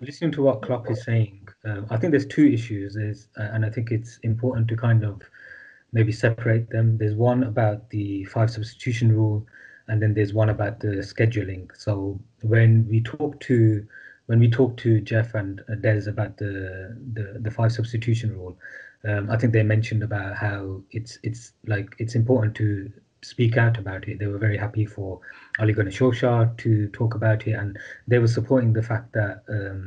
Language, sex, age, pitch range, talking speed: English, male, 30-49, 105-115 Hz, 190 wpm